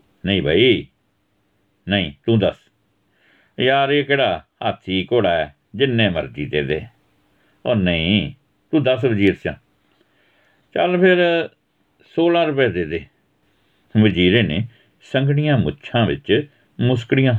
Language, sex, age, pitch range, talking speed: Punjabi, male, 60-79, 95-125 Hz, 110 wpm